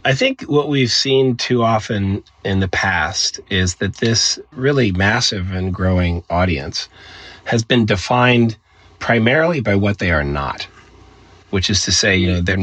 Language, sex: English, male